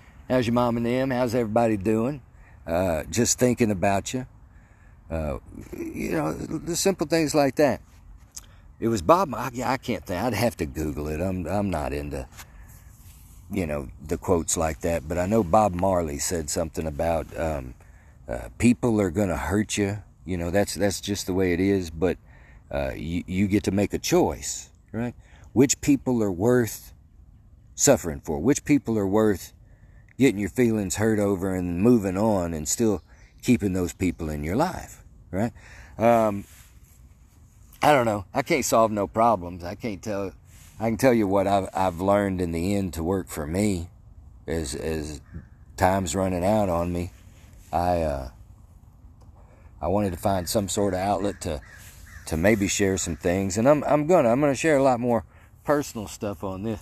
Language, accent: English, American